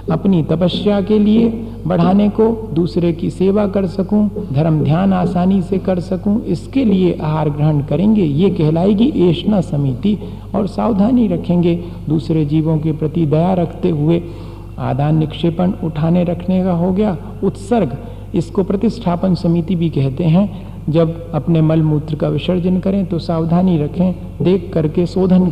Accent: native